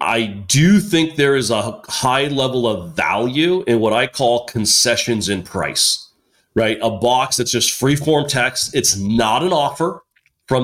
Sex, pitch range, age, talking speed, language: male, 110-140 Hz, 40-59, 170 wpm, English